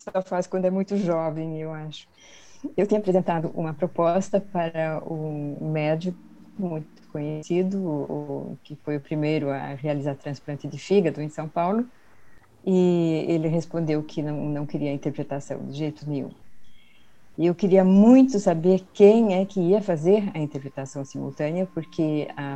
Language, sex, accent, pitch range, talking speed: Portuguese, female, Brazilian, 150-185 Hz, 150 wpm